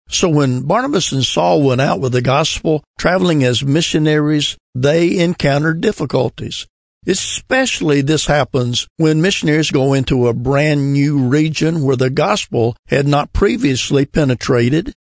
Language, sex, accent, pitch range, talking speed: English, male, American, 135-165 Hz, 135 wpm